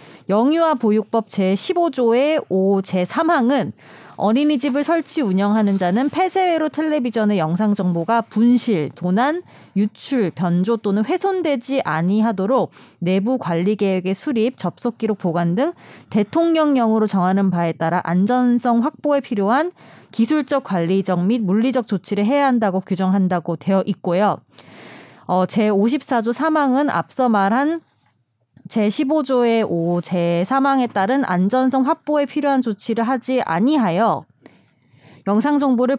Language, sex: Korean, female